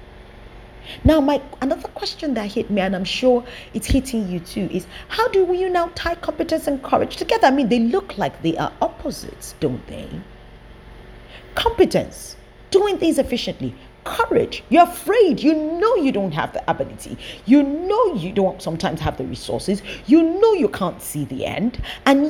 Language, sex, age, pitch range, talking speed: English, female, 40-59, 170-270 Hz, 170 wpm